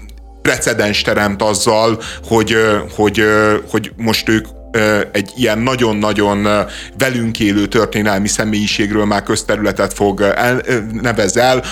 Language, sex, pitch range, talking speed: Hungarian, male, 105-120 Hz, 95 wpm